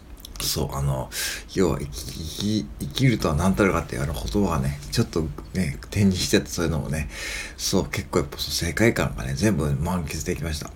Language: Japanese